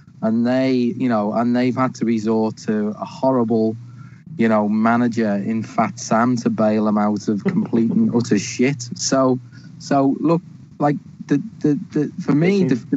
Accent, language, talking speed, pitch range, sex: British, English, 170 wpm, 115-150 Hz, male